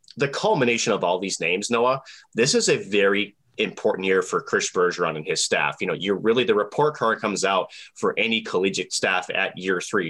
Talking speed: 210 wpm